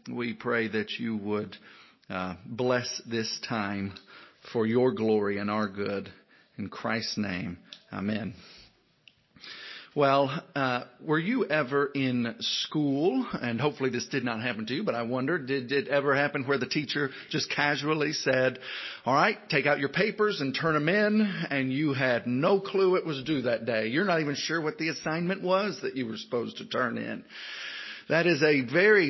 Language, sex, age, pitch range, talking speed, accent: English, male, 50-69, 125-190 Hz, 180 wpm, American